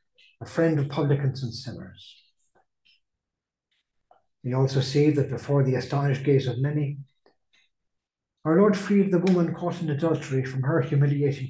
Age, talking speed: 60-79, 140 wpm